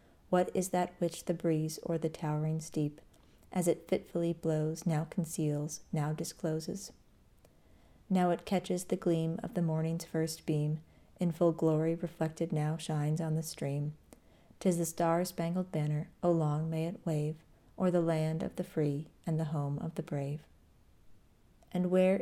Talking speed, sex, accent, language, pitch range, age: 160 wpm, female, American, English, 155-175 Hz, 40-59